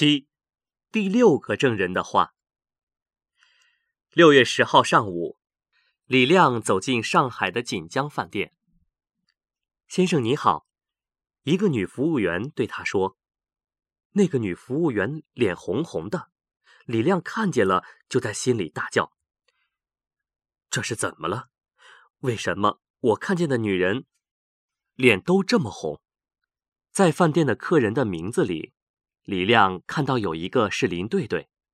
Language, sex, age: Vietnamese, male, 30-49